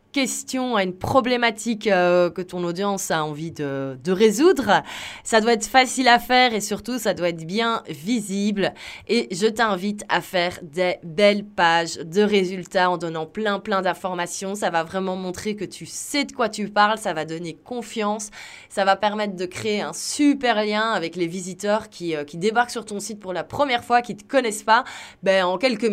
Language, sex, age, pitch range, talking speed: French, female, 20-39, 190-240 Hz, 200 wpm